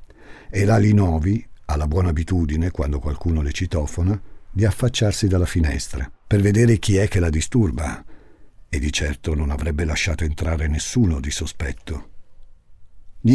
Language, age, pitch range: Italian, 50-69, 85-105 Hz